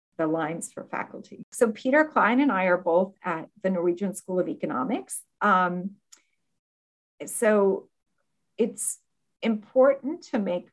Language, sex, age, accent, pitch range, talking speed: English, female, 50-69, American, 170-205 Hz, 125 wpm